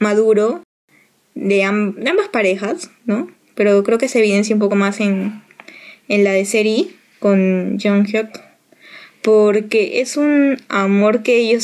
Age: 10-29